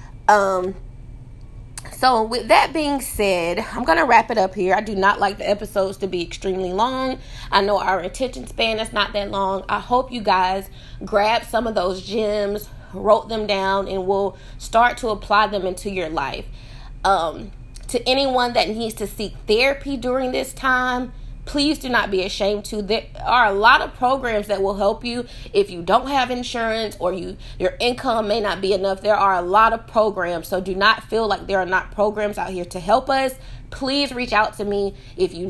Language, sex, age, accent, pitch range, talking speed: English, female, 20-39, American, 185-230 Hz, 205 wpm